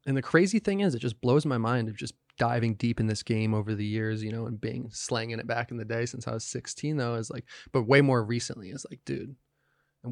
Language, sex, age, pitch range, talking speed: English, male, 20-39, 115-135 Hz, 265 wpm